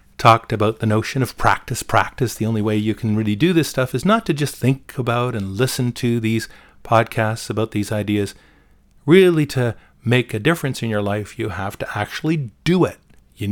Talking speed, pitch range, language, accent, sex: 200 wpm, 100-135 Hz, English, American, male